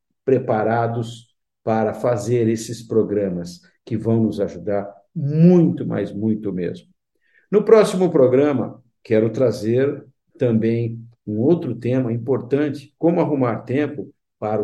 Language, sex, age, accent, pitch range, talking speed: Portuguese, male, 60-79, Brazilian, 105-135 Hz, 110 wpm